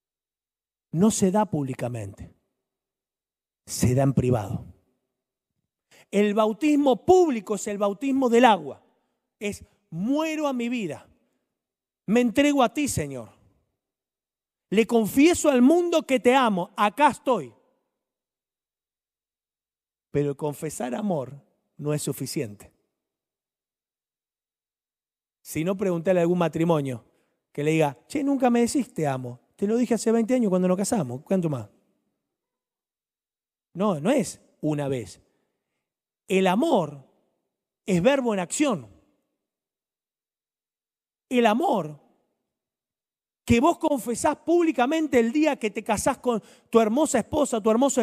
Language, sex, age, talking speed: Spanish, male, 40-59, 115 wpm